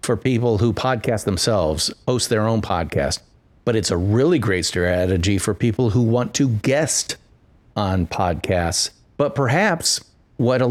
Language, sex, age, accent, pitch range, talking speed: English, male, 50-69, American, 100-135 Hz, 150 wpm